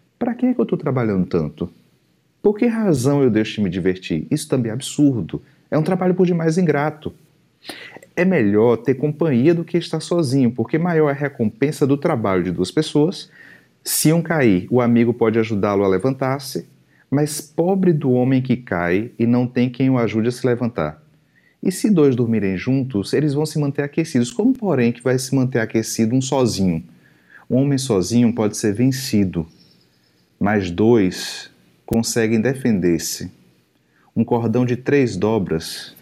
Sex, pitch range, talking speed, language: male, 105-145 Hz, 170 wpm, Portuguese